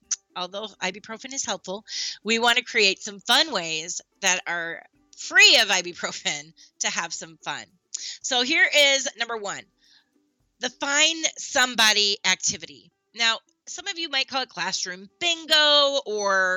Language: English